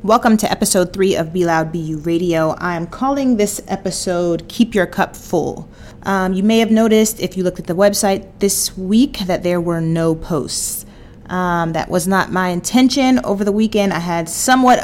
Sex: female